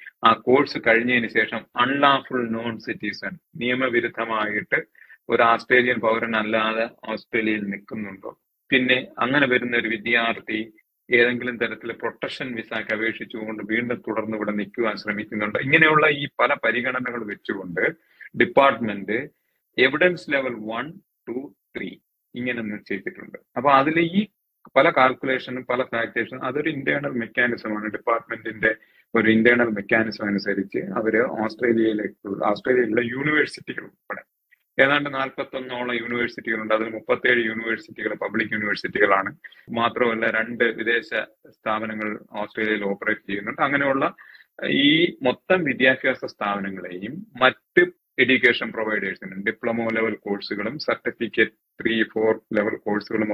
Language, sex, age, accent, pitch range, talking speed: Malayalam, male, 40-59, native, 110-130 Hz, 105 wpm